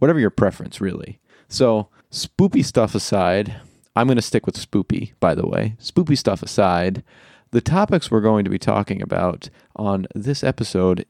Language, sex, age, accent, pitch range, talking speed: English, male, 30-49, American, 110-145 Hz, 170 wpm